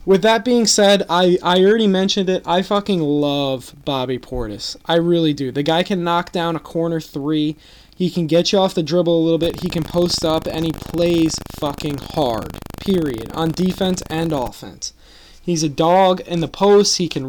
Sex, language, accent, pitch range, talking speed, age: male, English, American, 155-185 Hz, 200 wpm, 20-39